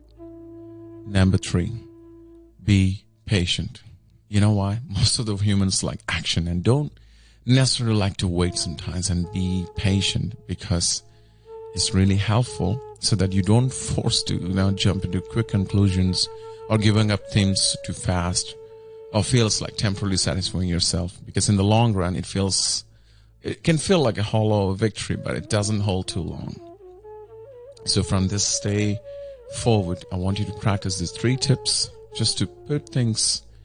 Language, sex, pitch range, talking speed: English, male, 95-120 Hz, 155 wpm